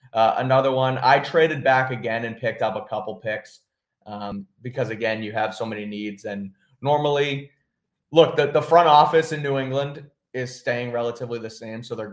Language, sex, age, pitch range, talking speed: English, male, 20-39, 110-135 Hz, 190 wpm